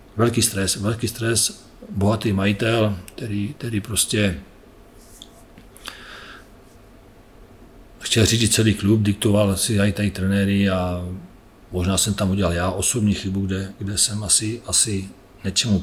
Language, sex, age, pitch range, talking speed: Czech, male, 40-59, 95-105 Hz, 120 wpm